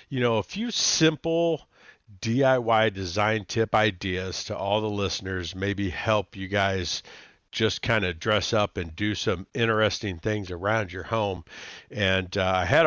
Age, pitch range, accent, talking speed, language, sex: 50-69, 95-115 Hz, American, 160 wpm, English, male